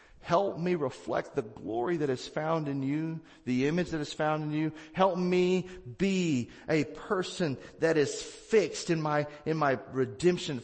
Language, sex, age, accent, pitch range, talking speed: English, male, 40-59, American, 155-245 Hz, 170 wpm